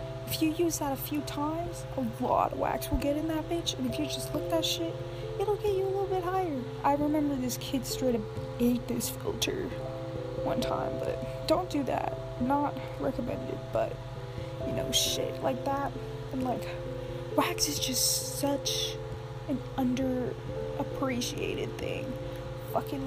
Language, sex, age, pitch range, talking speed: English, female, 20-39, 125-140 Hz, 165 wpm